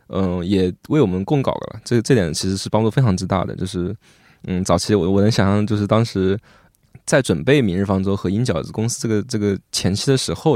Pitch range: 95-115 Hz